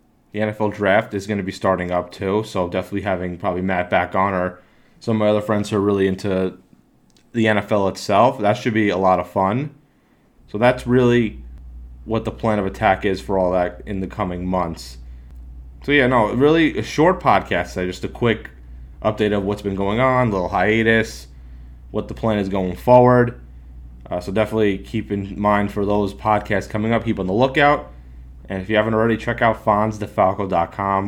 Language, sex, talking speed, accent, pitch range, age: English, male, 195 wpm, American, 90-110 Hz, 30-49